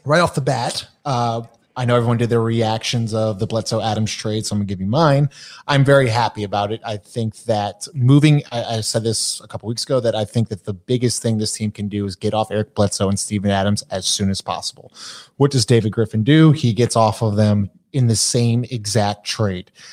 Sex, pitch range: male, 105-135 Hz